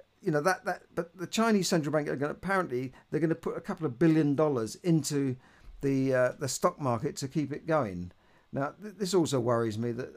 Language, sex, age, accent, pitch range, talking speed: English, male, 50-69, British, 130-165 Hz, 230 wpm